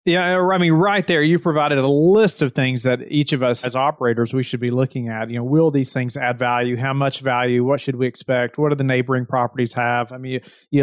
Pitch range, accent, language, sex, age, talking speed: 130-155 Hz, American, English, male, 30-49, 250 wpm